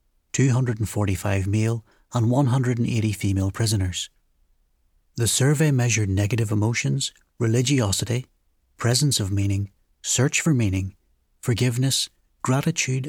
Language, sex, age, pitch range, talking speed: English, male, 60-79, 100-125 Hz, 90 wpm